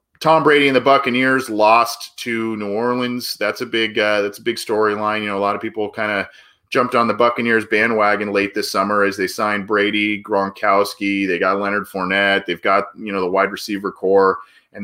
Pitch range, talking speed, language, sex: 100-120 Hz, 205 wpm, English, male